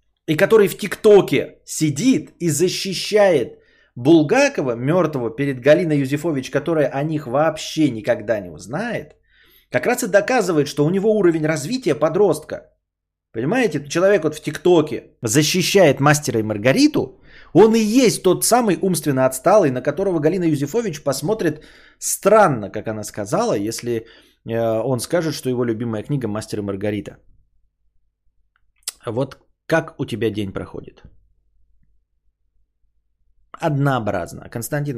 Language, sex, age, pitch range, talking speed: Bulgarian, male, 20-39, 120-185 Hz, 125 wpm